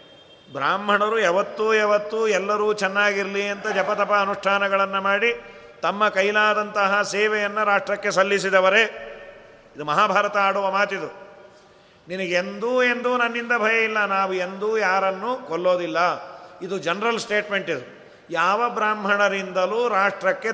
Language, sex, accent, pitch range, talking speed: Kannada, male, native, 180-225 Hz, 100 wpm